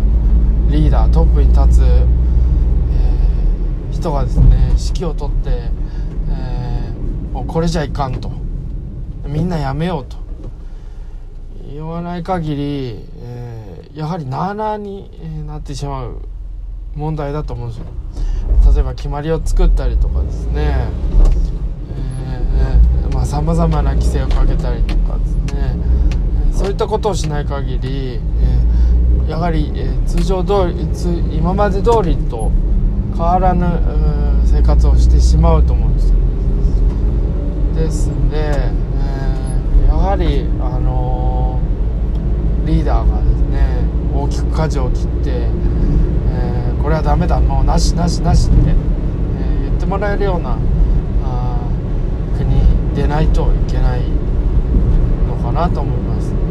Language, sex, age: Japanese, male, 20-39